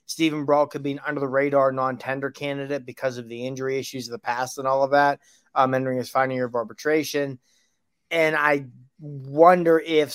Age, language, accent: 30-49, English, American